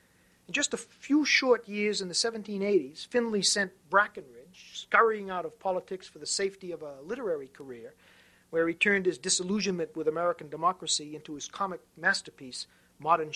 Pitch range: 160-225 Hz